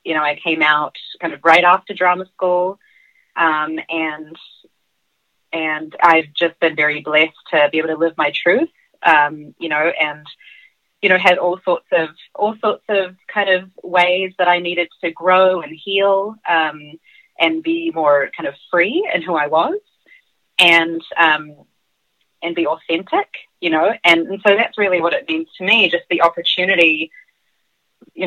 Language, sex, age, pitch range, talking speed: English, female, 30-49, 155-190 Hz, 170 wpm